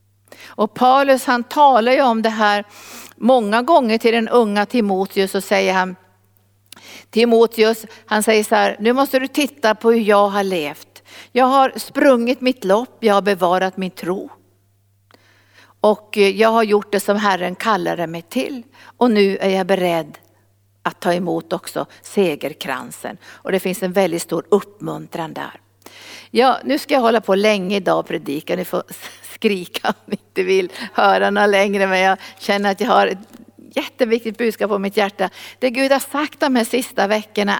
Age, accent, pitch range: 50-69, native, 185-245 Hz